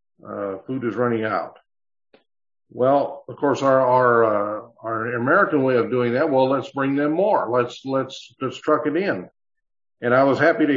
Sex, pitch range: male, 115-150 Hz